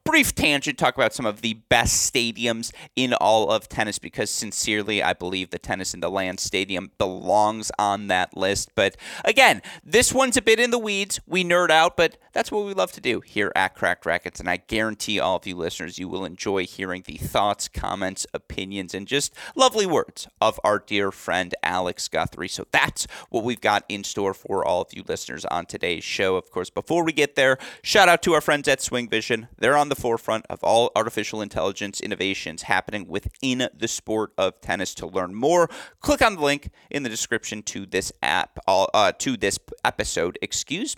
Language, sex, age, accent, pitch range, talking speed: English, male, 30-49, American, 100-145 Hz, 200 wpm